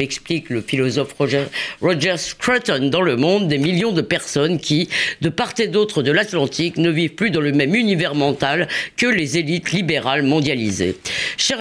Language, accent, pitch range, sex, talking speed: French, French, 145-195 Hz, female, 170 wpm